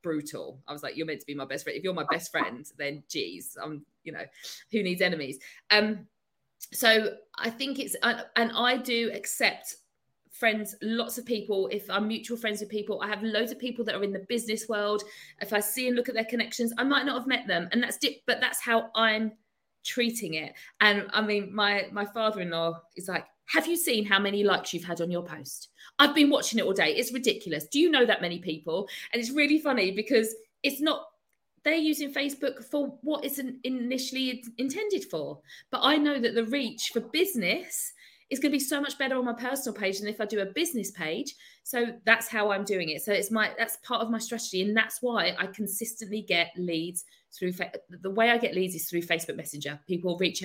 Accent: British